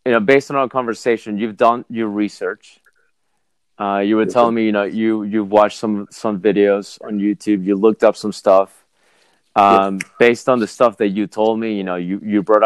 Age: 30-49